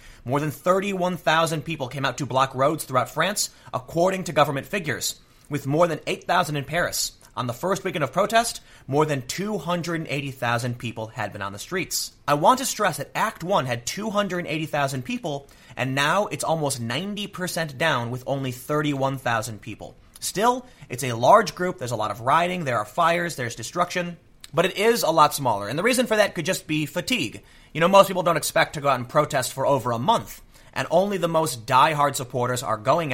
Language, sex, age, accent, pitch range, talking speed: English, male, 30-49, American, 130-180 Hz, 195 wpm